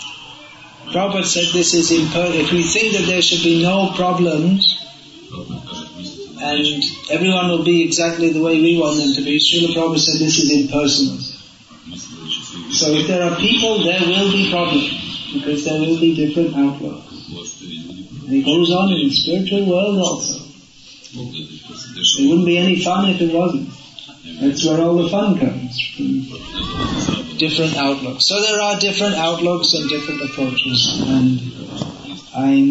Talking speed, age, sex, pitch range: 150 wpm, 30-49, male, 140-175 Hz